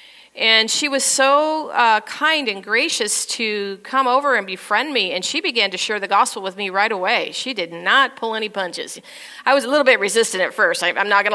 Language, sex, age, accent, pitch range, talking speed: English, female, 40-59, American, 210-265 Hz, 220 wpm